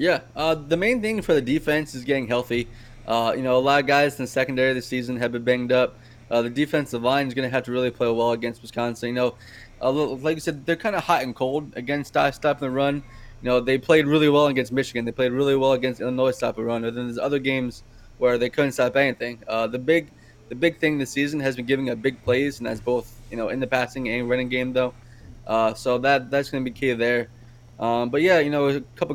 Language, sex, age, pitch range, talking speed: English, male, 20-39, 120-140 Hz, 260 wpm